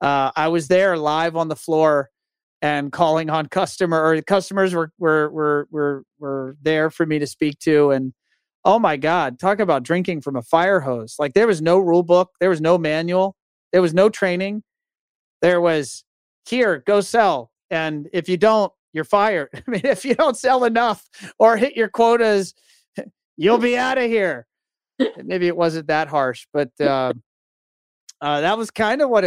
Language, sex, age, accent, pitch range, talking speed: English, male, 40-59, American, 145-180 Hz, 180 wpm